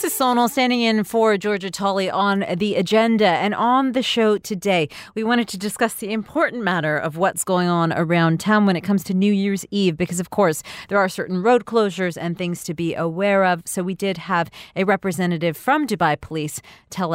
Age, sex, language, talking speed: 40-59, female, English, 210 wpm